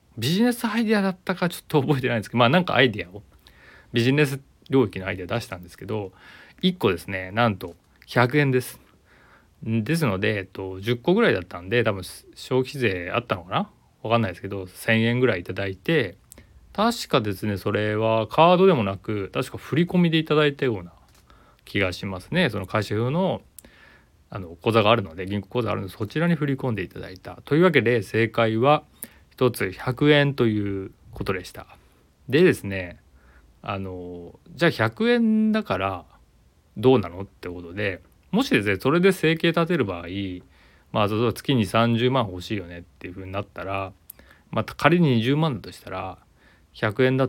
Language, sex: Japanese, male